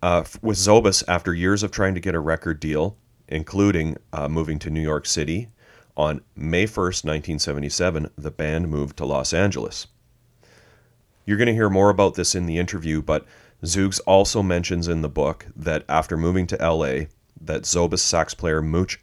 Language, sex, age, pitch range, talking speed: English, male, 30-49, 75-95 Hz, 175 wpm